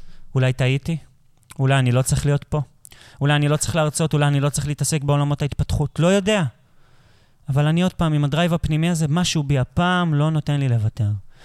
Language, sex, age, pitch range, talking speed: Hebrew, male, 30-49, 130-170 Hz, 190 wpm